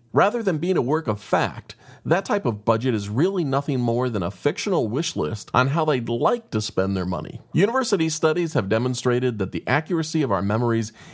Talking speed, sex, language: 205 wpm, male, English